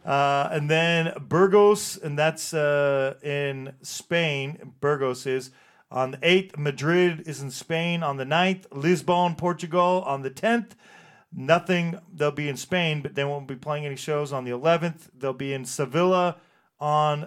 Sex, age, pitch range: male, 40-59, 140-170 Hz